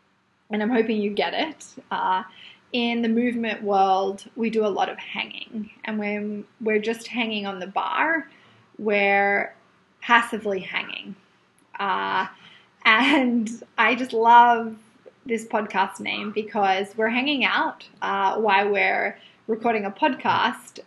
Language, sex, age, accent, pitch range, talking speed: English, female, 20-39, Australian, 200-235 Hz, 130 wpm